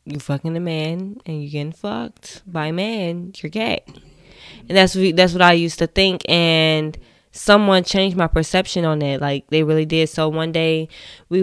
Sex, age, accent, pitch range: female, 10-29, American, 155-185 Hz